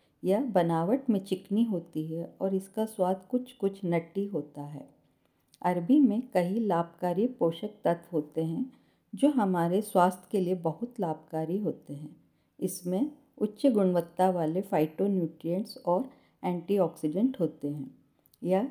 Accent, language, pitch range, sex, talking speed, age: native, Hindi, 170-225 Hz, female, 130 wpm, 50-69